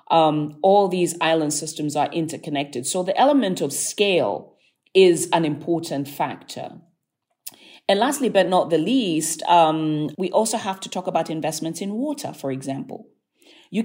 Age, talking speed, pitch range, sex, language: 40-59, 150 wpm, 155-190 Hz, female, English